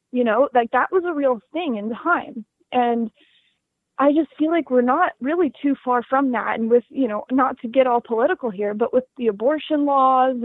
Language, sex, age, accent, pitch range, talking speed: English, female, 20-39, American, 220-265 Hz, 210 wpm